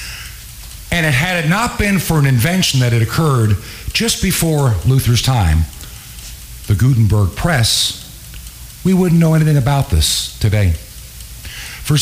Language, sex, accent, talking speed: English, male, American, 130 wpm